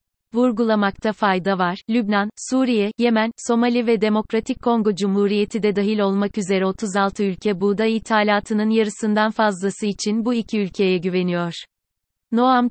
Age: 30-49